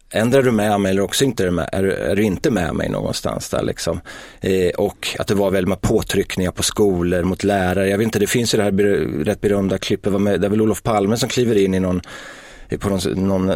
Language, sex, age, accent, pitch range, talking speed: Swedish, male, 30-49, native, 95-105 Hz, 260 wpm